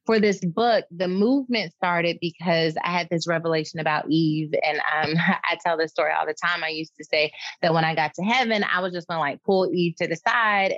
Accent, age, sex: American, 30-49, female